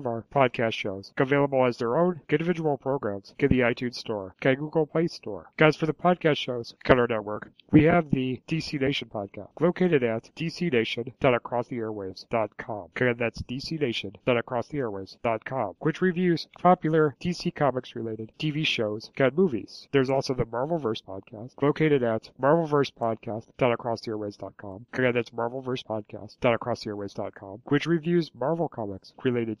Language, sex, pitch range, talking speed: English, male, 110-150 Hz, 135 wpm